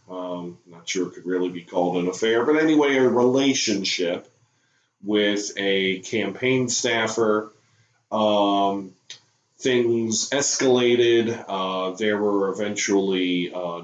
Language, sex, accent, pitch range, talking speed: English, male, American, 95-120 Hz, 115 wpm